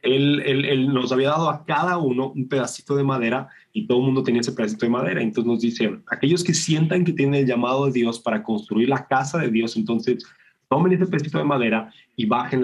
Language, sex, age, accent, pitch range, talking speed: Spanish, male, 20-39, Mexican, 120-145 Hz, 230 wpm